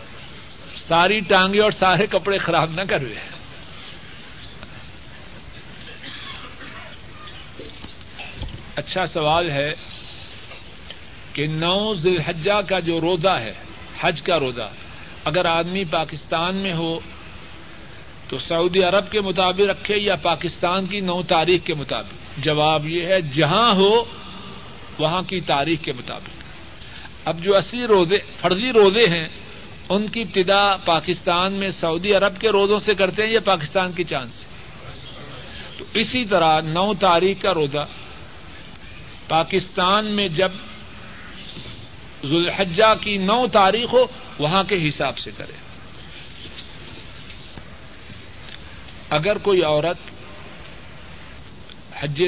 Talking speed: 115 wpm